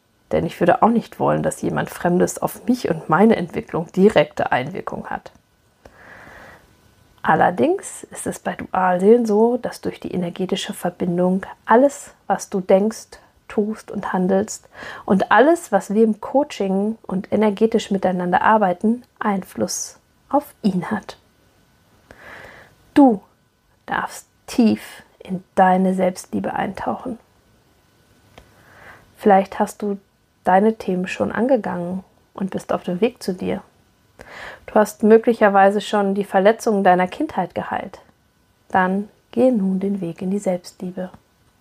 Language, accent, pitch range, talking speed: German, German, 185-225 Hz, 125 wpm